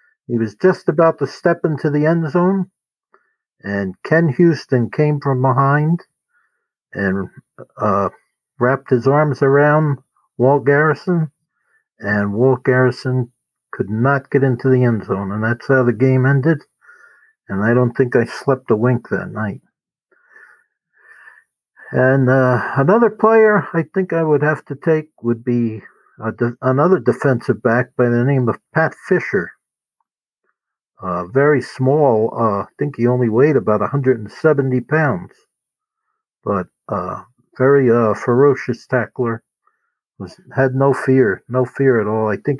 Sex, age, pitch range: male, 60-79, 120-145 Hz